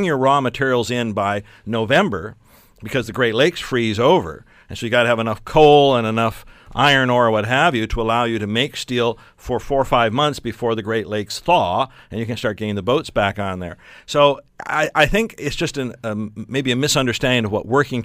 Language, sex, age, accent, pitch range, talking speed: English, male, 50-69, American, 105-130 Hz, 225 wpm